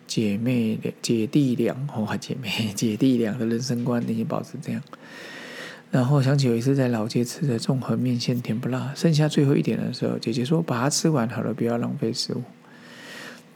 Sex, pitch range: male, 115-130 Hz